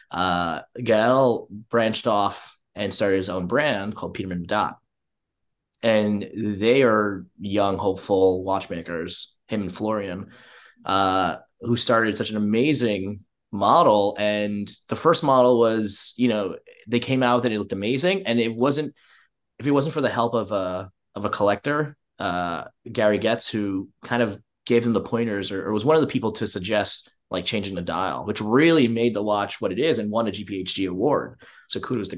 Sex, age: male, 20-39